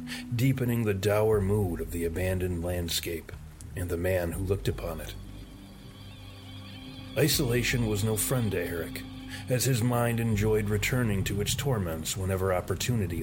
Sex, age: male, 40-59